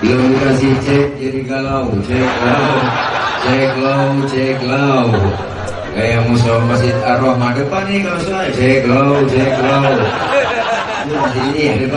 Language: Indonesian